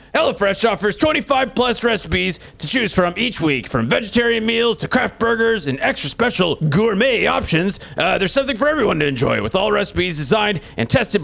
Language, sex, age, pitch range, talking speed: English, male, 30-49, 175-250 Hz, 180 wpm